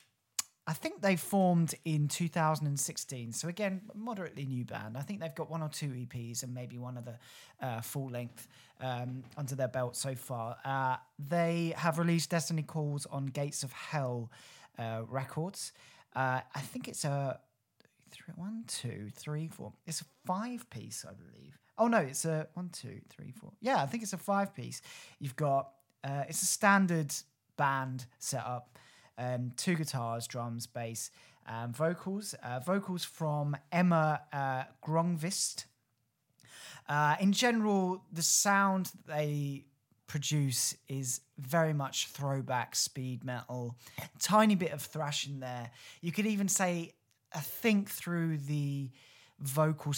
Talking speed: 150 wpm